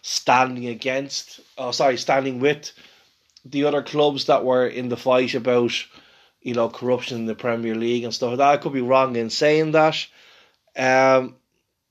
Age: 20-39